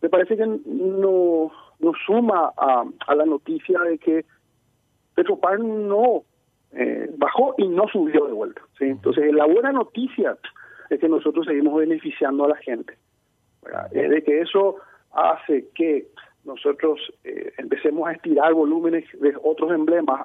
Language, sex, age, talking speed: Spanish, male, 40-59, 150 wpm